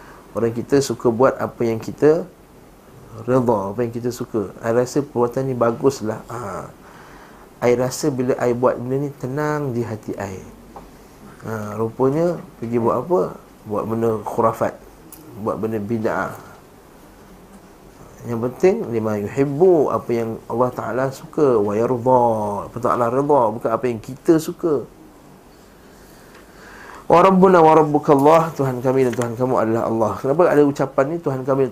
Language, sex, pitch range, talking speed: Malay, male, 115-135 Hz, 140 wpm